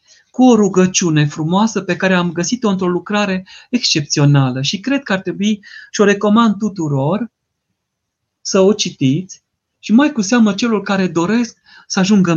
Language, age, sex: Romanian, 40-59, male